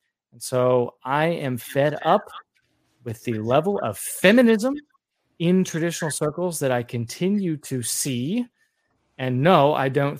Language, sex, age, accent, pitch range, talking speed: English, male, 20-39, American, 120-155 Hz, 130 wpm